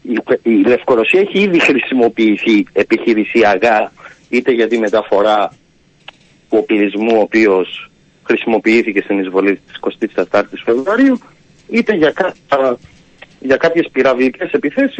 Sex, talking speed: male, 110 wpm